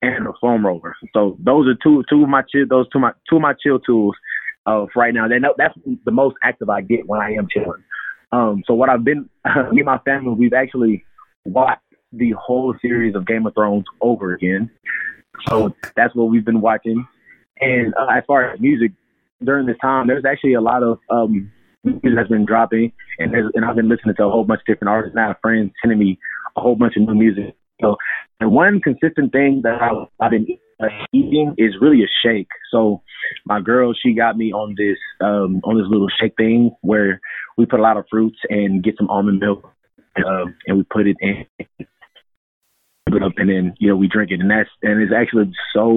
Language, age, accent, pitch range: English, 30-49, American, 105-125 Hz